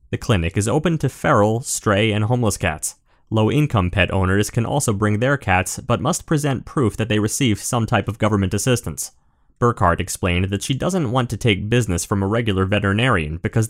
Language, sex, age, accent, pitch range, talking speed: English, male, 30-49, American, 95-130 Hz, 195 wpm